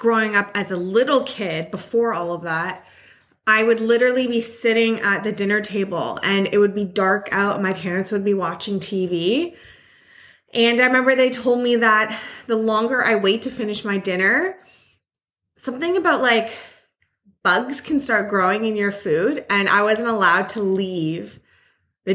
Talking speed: 175 wpm